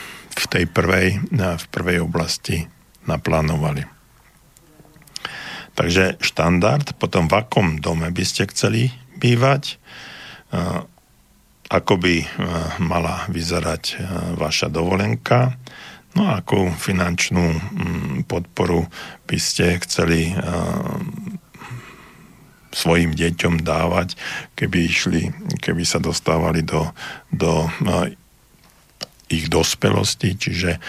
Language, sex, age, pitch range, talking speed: Slovak, male, 50-69, 85-105 Hz, 85 wpm